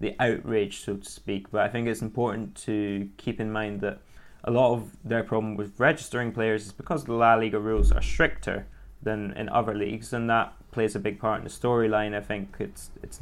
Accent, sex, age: British, male, 20-39